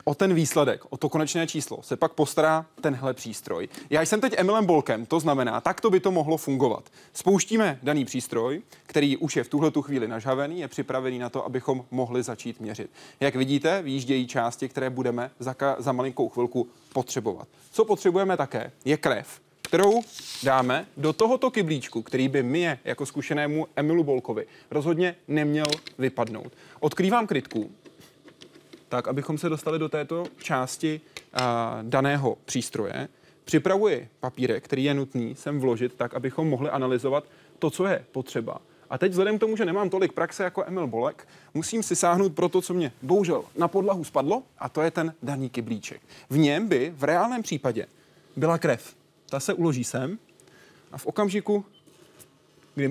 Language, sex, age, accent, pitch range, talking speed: Czech, male, 20-39, native, 130-170 Hz, 165 wpm